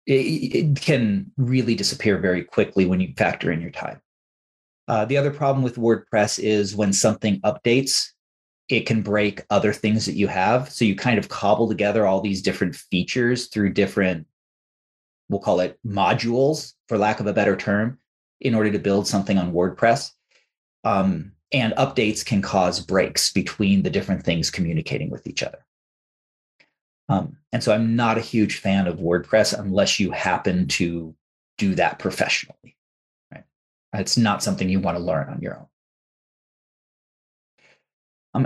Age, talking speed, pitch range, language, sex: 30-49, 160 wpm, 95-130 Hz, English, male